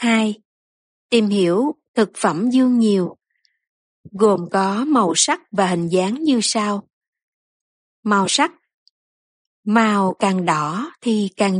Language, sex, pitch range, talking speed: Vietnamese, female, 195-255 Hz, 120 wpm